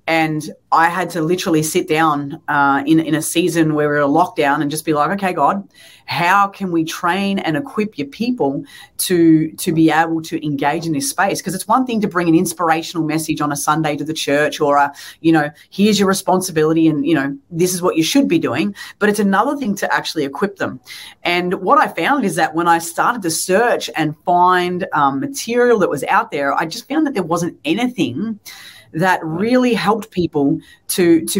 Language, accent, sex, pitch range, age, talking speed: English, Australian, female, 155-195 Hz, 30-49, 215 wpm